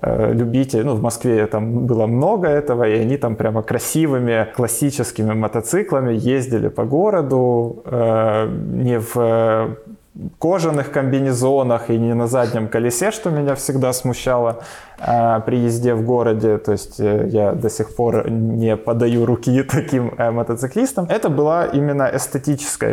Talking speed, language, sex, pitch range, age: 140 wpm, Ukrainian, male, 115-140 Hz, 20-39